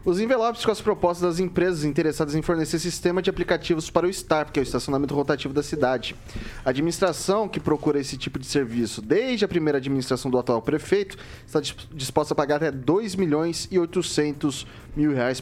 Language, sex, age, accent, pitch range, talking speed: Portuguese, male, 20-39, Brazilian, 135-180 Hz, 180 wpm